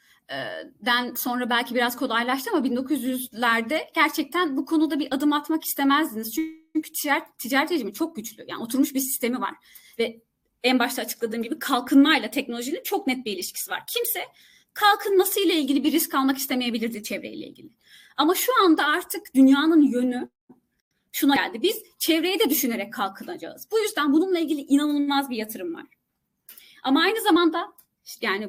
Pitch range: 240-320 Hz